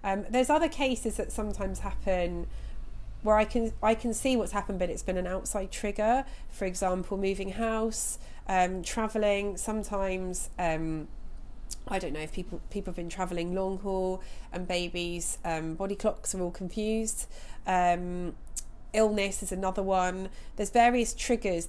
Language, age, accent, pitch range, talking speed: English, 30-49, British, 170-210 Hz, 155 wpm